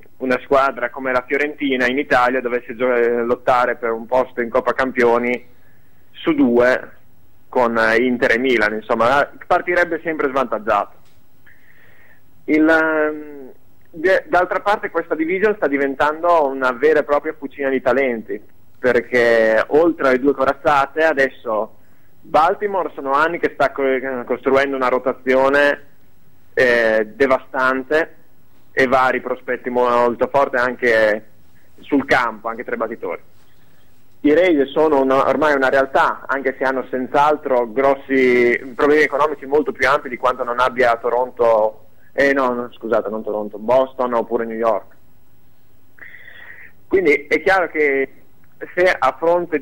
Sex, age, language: male, 30-49, Italian